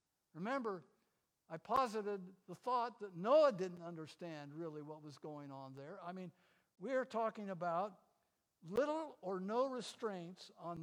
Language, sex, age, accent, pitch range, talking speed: English, male, 60-79, American, 155-205 Hz, 145 wpm